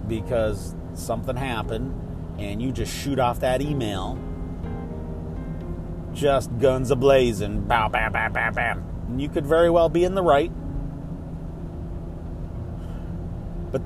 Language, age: English, 30-49